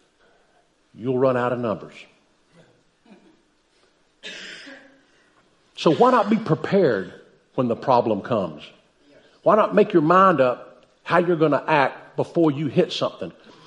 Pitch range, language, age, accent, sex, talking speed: 120-180 Hz, English, 50-69, American, male, 125 wpm